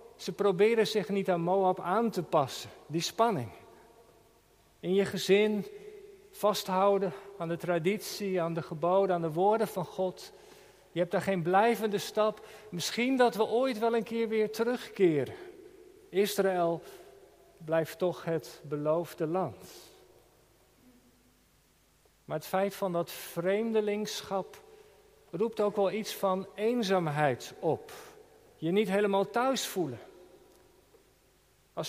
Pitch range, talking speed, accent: 185-230 Hz, 125 wpm, Dutch